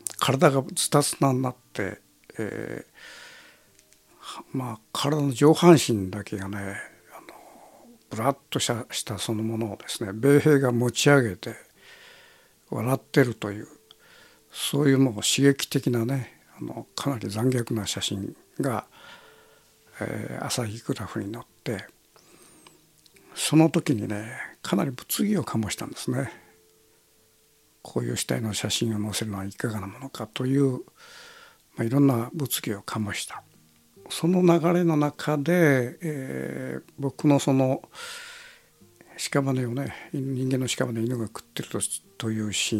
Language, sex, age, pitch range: Japanese, male, 60-79, 110-145 Hz